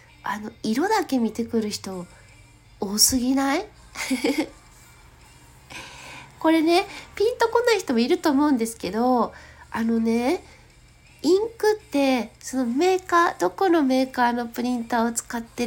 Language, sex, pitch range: Japanese, female, 225-300 Hz